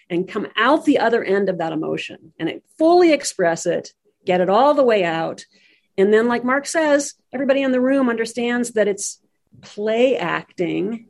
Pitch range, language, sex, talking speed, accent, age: 180-235 Hz, English, female, 180 wpm, American, 50-69